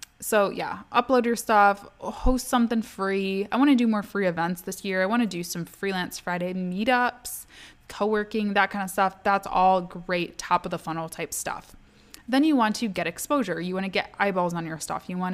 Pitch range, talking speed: 185-225 Hz, 215 wpm